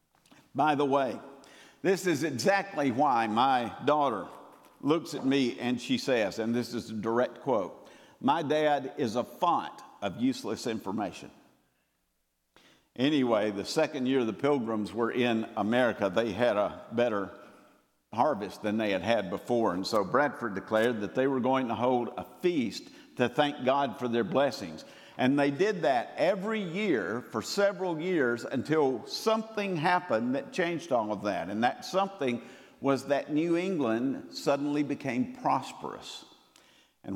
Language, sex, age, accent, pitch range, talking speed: English, male, 50-69, American, 120-160 Hz, 150 wpm